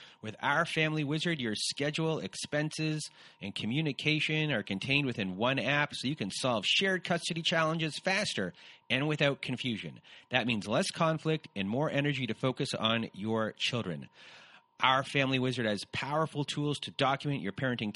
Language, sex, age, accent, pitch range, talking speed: English, male, 30-49, American, 120-155 Hz, 155 wpm